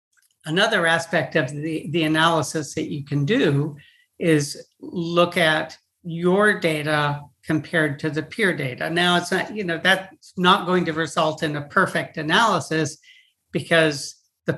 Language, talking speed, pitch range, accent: English, 150 wpm, 150-175 Hz, American